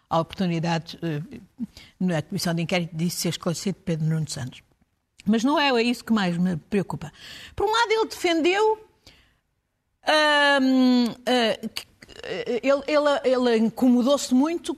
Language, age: Portuguese, 50-69